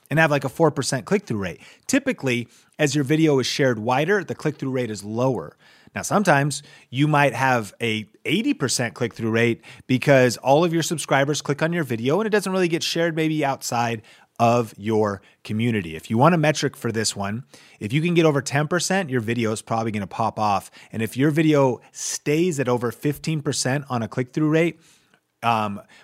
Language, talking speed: English, 190 wpm